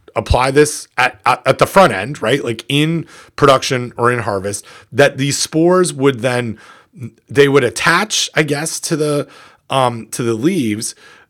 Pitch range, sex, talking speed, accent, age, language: 125-155 Hz, male, 165 wpm, American, 30-49, English